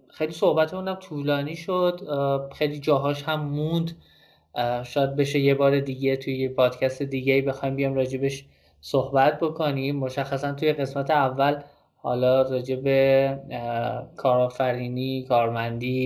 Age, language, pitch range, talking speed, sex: 20-39, Persian, 130-150 Hz, 110 wpm, male